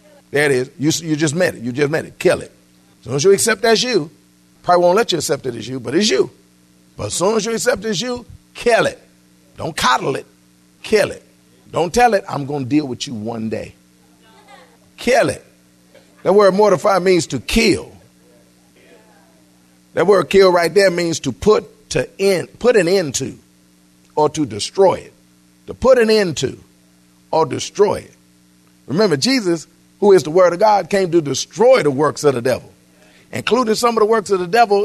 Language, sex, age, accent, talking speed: English, male, 50-69, American, 200 wpm